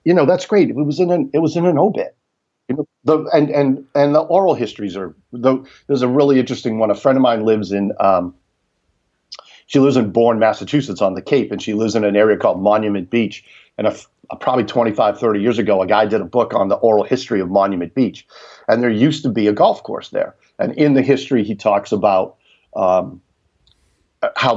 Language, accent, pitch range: English, American, 100-140 Hz